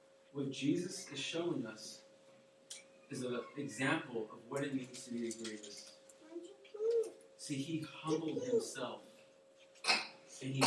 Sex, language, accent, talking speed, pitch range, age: male, English, American, 125 wpm, 115-160 Hz, 30-49